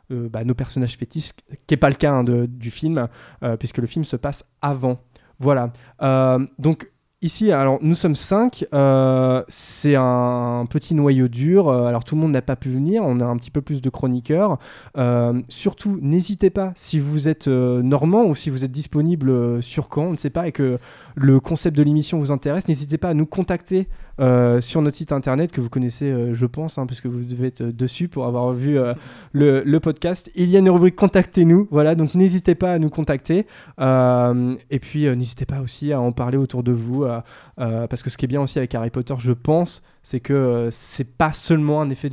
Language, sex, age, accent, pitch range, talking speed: French, male, 20-39, French, 125-155 Hz, 225 wpm